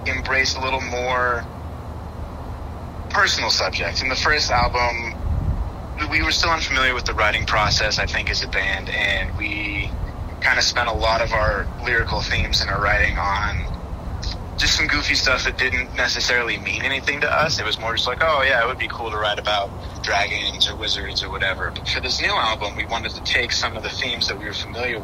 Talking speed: 205 wpm